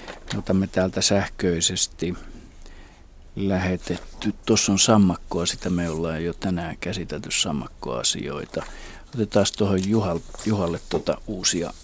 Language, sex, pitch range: Finnish, male, 90-110 Hz